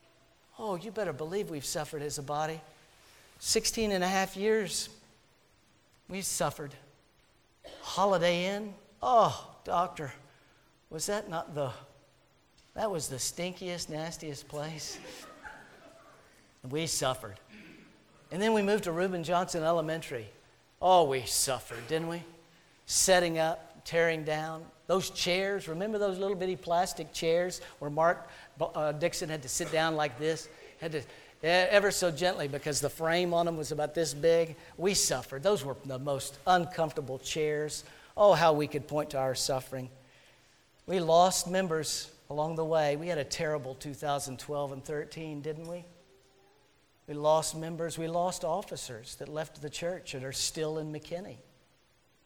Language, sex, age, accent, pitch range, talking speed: English, male, 50-69, American, 145-175 Hz, 145 wpm